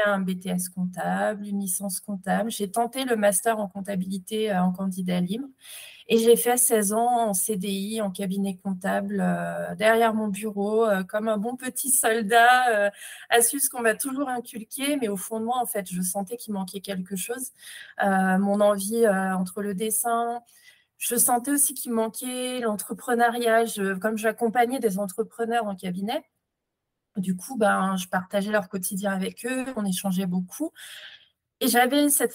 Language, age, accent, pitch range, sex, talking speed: French, 20-39, French, 195-240 Hz, female, 165 wpm